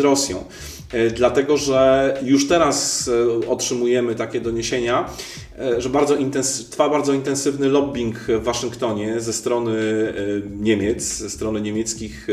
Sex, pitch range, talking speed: male, 120-140 Hz, 110 wpm